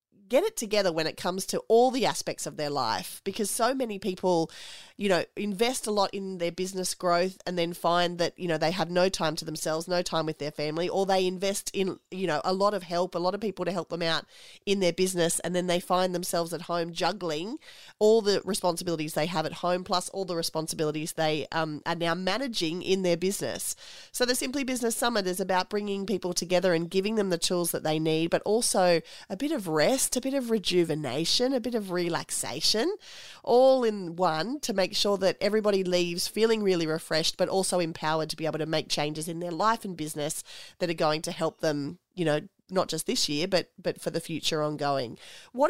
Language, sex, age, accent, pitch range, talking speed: English, female, 30-49, Australian, 160-200 Hz, 220 wpm